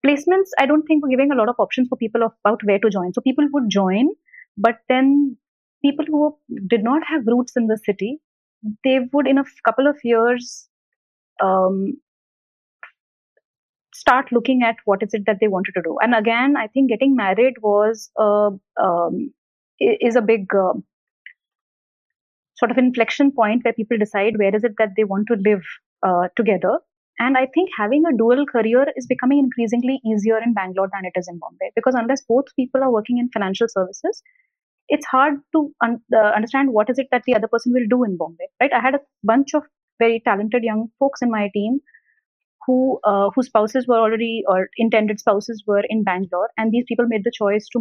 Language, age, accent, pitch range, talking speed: English, 30-49, Indian, 215-265 Hz, 195 wpm